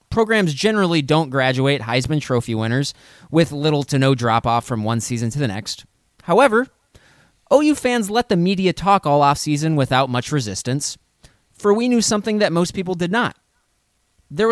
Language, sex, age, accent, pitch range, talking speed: English, male, 20-39, American, 120-165 Hz, 165 wpm